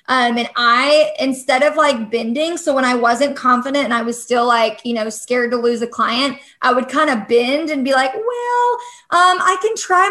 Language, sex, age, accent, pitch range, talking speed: English, female, 20-39, American, 235-300 Hz, 220 wpm